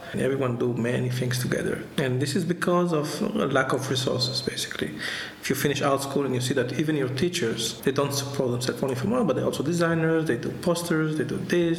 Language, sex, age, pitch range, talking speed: French, male, 50-69, 130-170 Hz, 230 wpm